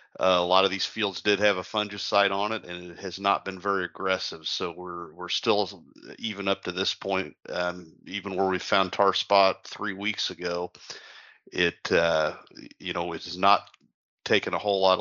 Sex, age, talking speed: male, 40-59, 190 wpm